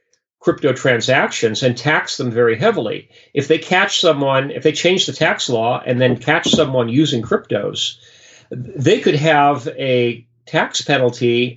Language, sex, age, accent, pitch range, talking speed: English, male, 40-59, American, 125-155 Hz, 150 wpm